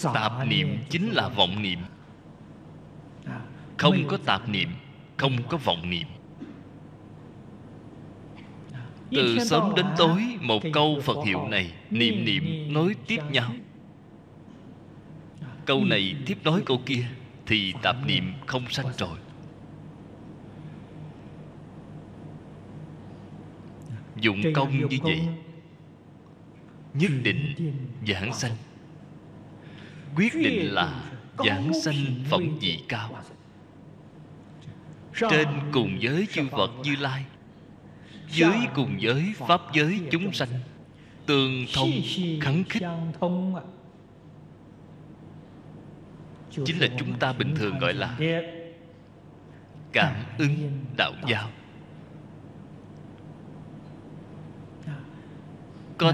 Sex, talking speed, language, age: male, 95 wpm, Vietnamese, 20-39